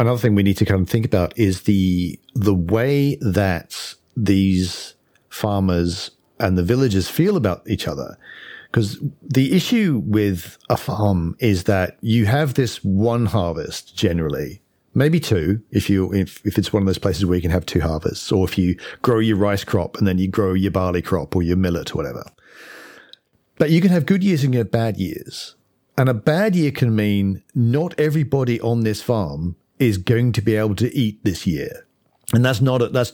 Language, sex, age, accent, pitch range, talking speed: English, male, 50-69, British, 100-125 Hz, 200 wpm